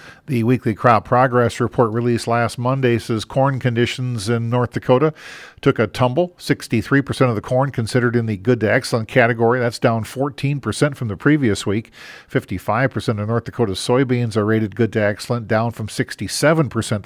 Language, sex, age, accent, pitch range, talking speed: English, male, 50-69, American, 110-135 Hz, 170 wpm